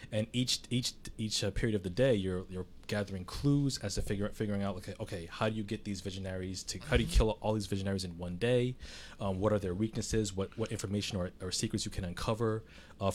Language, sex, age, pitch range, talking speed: English, male, 20-39, 95-110 Hz, 240 wpm